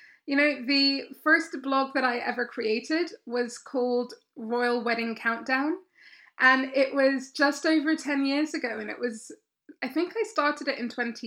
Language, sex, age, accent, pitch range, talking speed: English, female, 20-39, British, 240-285 Hz, 170 wpm